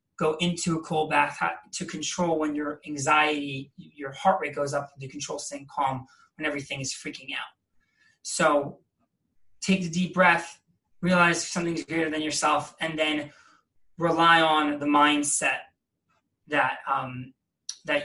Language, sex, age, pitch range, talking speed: English, male, 20-39, 145-175 Hz, 145 wpm